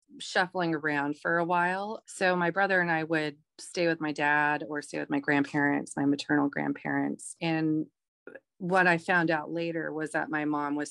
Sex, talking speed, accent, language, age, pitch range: female, 185 wpm, American, English, 30-49, 150-175 Hz